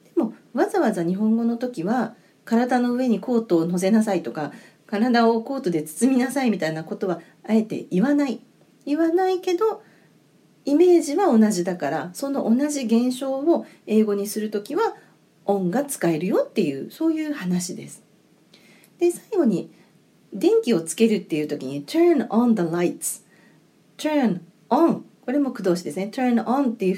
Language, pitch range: Japanese, 180-280 Hz